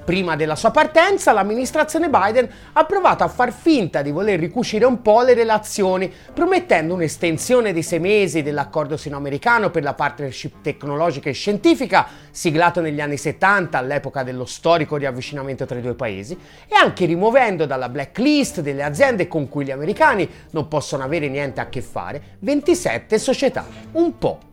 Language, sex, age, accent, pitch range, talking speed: Italian, male, 30-49, native, 155-250 Hz, 160 wpm